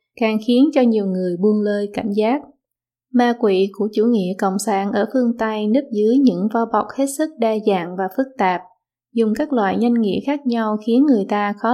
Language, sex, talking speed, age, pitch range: Vietnamese, female, 215 wpm, 20-39, 195-240 Hz